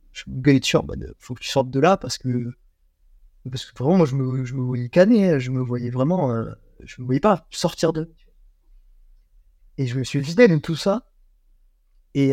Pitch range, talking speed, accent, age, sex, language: 125-155 Hz, 195 wpm, French, 30-49, male, French